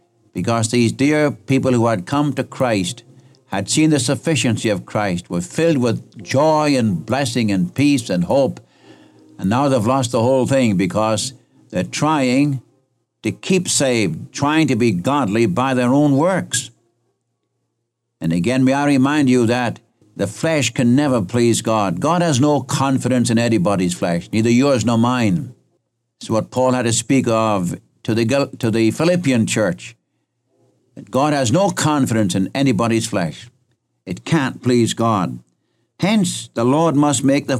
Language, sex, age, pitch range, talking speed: English, male, 60-79, 110-140 Hz, 160 wpm